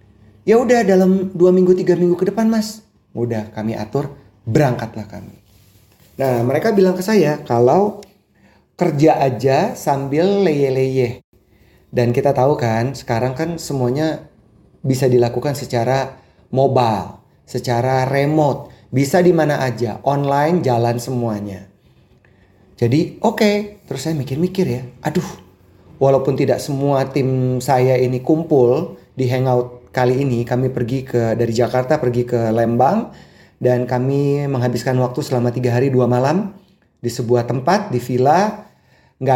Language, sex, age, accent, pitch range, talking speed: Indonesian, male, 30-49, native, 120-160 Hz, 135 wpm